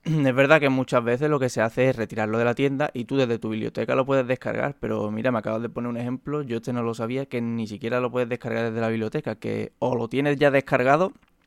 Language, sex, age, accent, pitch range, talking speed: Spanish, male, 20-39, Spanish, 115-135 Hz, 260 wpm